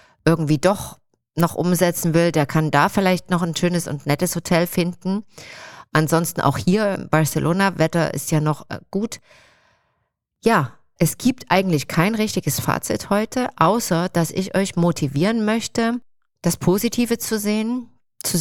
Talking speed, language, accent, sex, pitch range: 145 wpm, German, German, female, 160-195 Hz